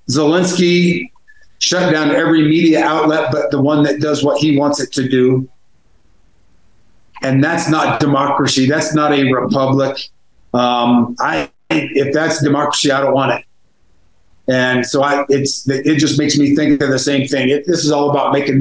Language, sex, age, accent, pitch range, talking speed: English, male, 50-69, American, 130-150 Hz, 170 wpm